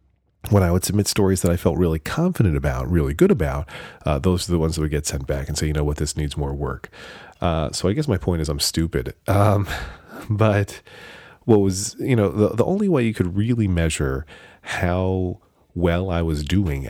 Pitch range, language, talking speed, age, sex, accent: 75-95 Hz, English, 215 wpm, 40-59, male, American